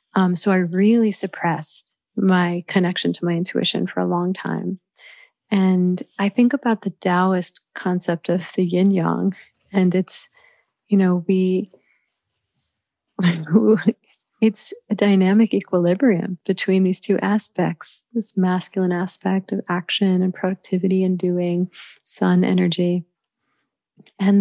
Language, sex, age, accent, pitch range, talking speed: English, female, 30-49, American, 175-205 Hz, 120 wpm